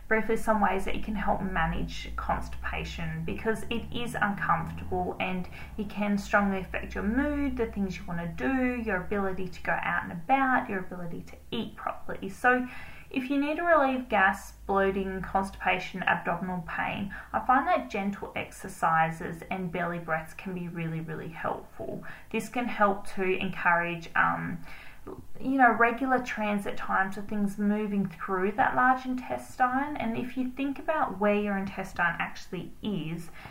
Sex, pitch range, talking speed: female, 175-225 Hz, 160 wpm